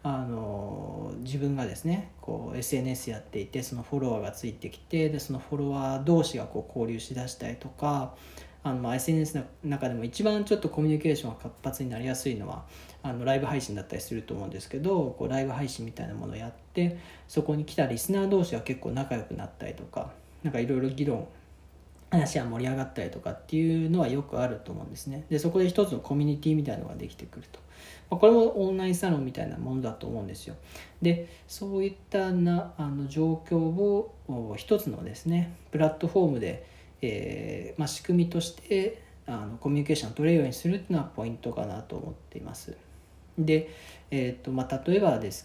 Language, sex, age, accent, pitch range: Japanese, male, 40-59, native, 115-160 Hz